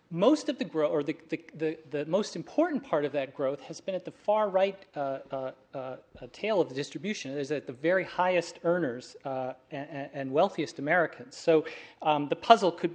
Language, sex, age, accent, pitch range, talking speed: English, male, 40-59, American, 130-175 Hz, 210 wpm